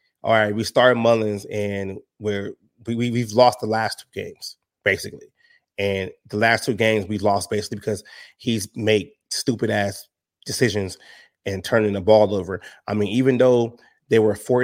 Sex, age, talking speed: male, 30-49, 170 wpm